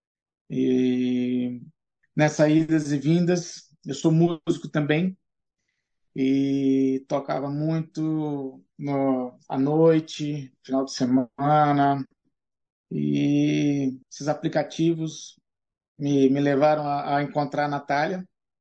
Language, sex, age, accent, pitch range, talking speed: Portuguese, male, 20-39, Brazilian, 140-165 Hz, 95 wpm